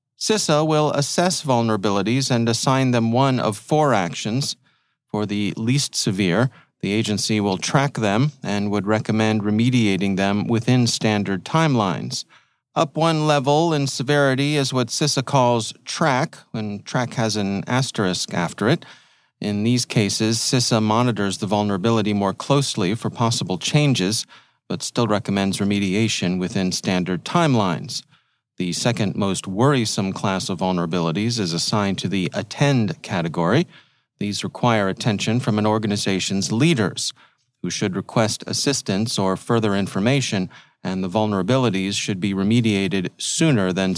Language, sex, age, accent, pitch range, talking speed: English, male, 40-59, American, 100-130 Hz, 135 wpm